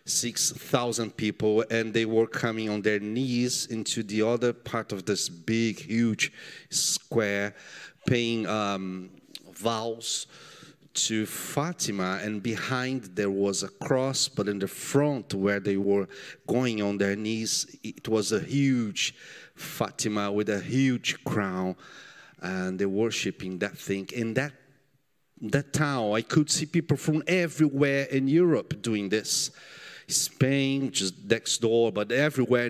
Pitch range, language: 110-155 Hz, English